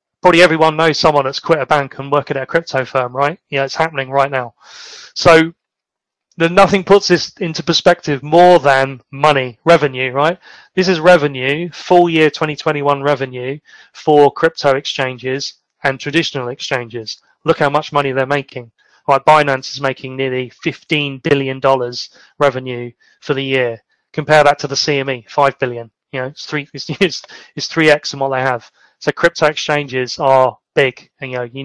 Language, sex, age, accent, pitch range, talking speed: English, male, 30-49, British, 135-160 Hz, 175 wpm